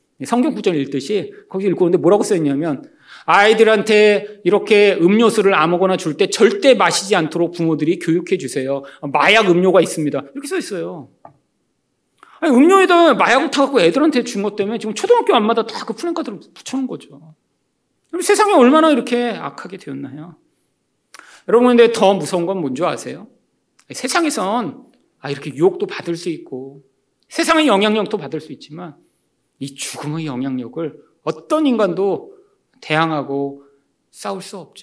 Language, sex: Korean, male